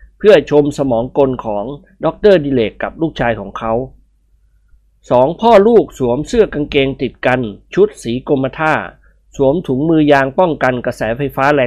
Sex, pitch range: male, 125-185 Hz